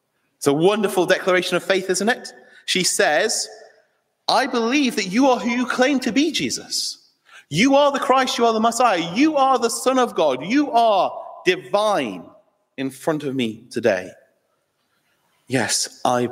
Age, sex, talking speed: 30-49, male, 160 wpm